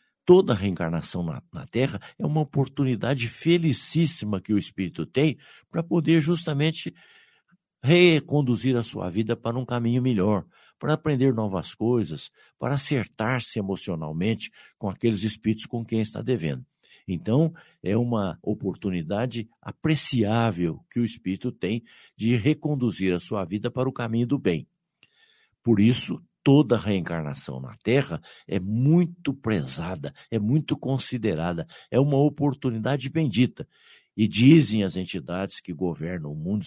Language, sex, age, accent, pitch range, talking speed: Portuguese, male, 60-79, Brazilian, 105-145 Hz, 135 wpm